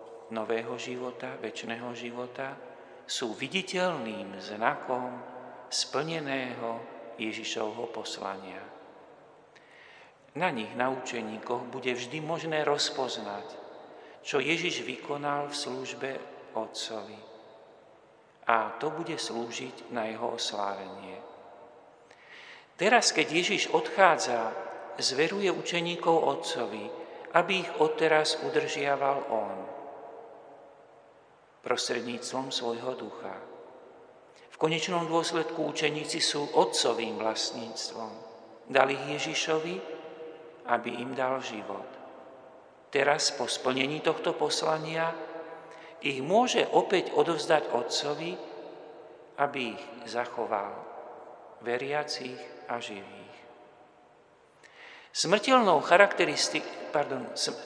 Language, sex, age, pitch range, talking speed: Slovak, male, 50-69, 115-155 Hz, 80 wpm